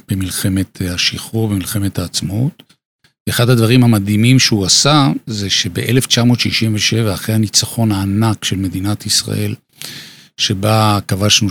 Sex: male